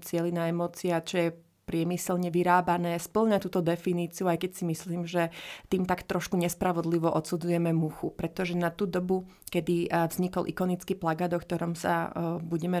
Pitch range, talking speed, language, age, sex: 170-190 Hz, 150 wpm, Slovak, 30-49, female